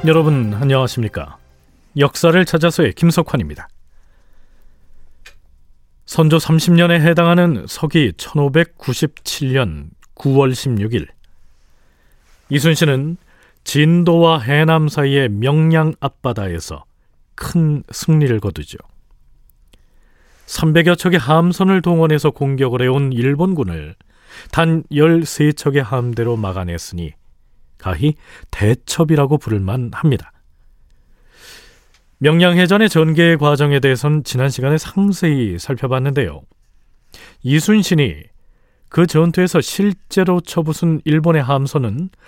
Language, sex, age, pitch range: Korean, male, 40-59, 105-165 Hz